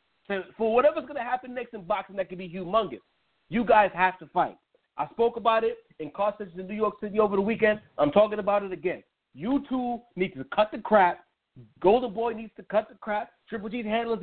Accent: American